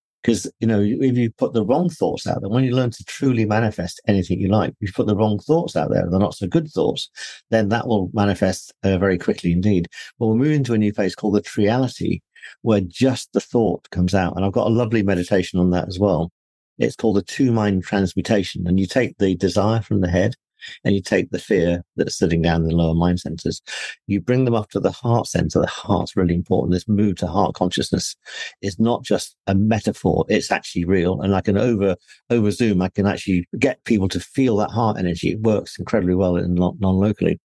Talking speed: 225 wpm